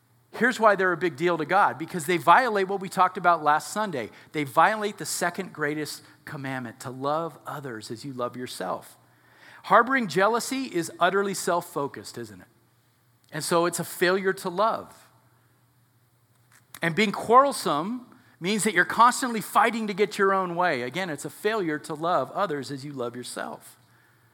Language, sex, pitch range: English, male, 145-200 Hz